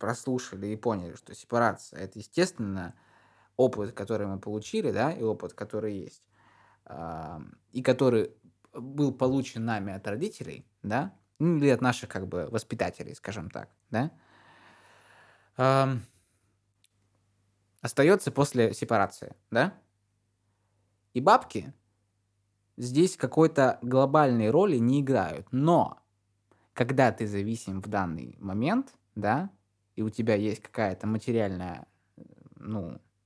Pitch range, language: 100-125 Hz, Russian